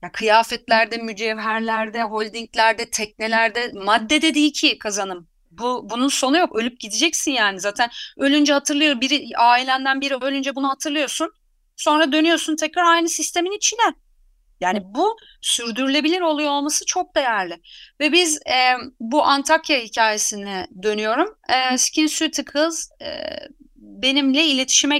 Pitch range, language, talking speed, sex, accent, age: 215-310 Hz, Turkish, 120 wpm, female, native, 30-49